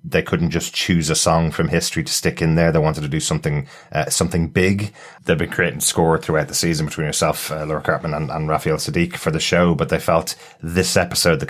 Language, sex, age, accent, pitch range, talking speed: English, male, 30-49, British, 80-95 Hz, 235 wpm